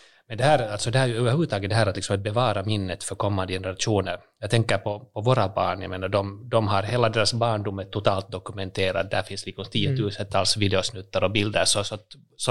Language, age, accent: Swedish, 30-49, Finnish